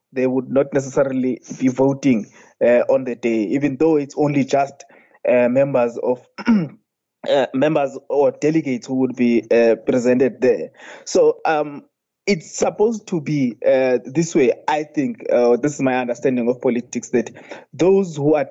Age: 20-39